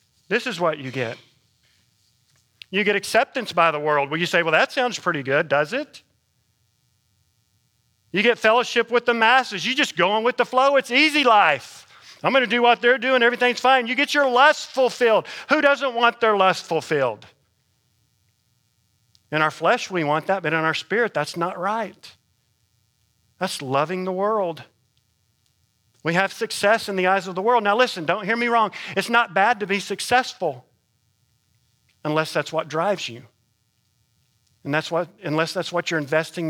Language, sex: English, male